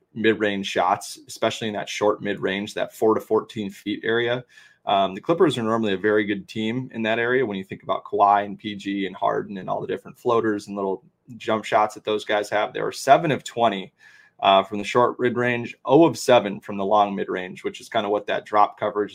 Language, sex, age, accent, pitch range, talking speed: English, male, 20-39, American, 100-125 Hz, 225 wpm